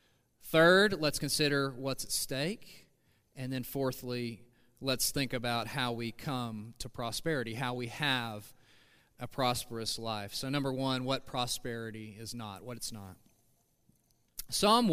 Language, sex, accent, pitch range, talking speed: English, male, American, 125-165 Hz, 135 wpm